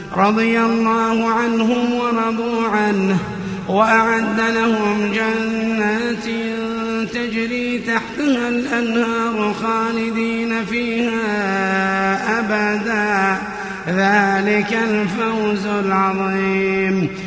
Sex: male